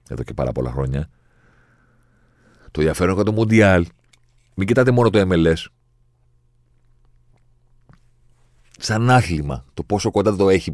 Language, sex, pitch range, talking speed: Greek, male, 75-120 Hz, 125 wpm